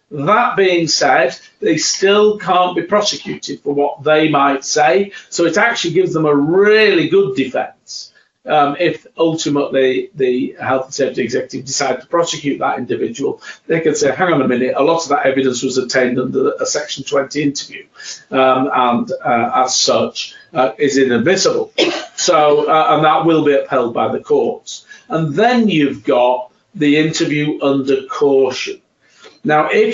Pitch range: 140-195 Hz